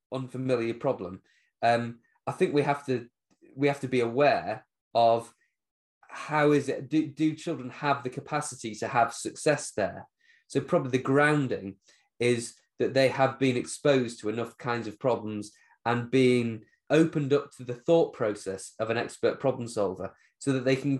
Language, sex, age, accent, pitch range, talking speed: English, male, 20-39, British, 115-145 Hz, 170 wpm